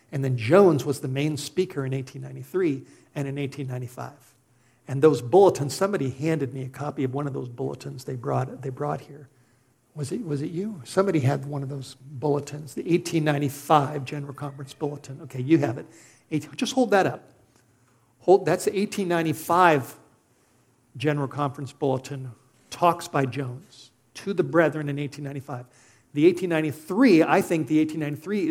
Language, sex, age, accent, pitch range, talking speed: English, male, 50-69, American, 135-165 Hz, 160 wpm